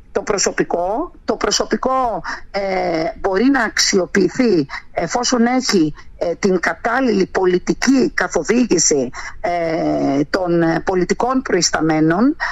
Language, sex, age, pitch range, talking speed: Greek, female, 50-69, 180-255 Hz, 90 wpm